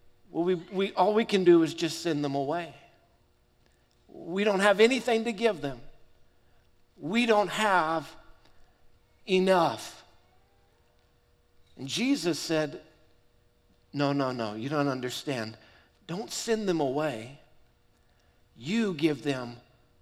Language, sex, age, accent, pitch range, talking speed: English, male, 50-69, American, 140-215 Hz, 115 wpm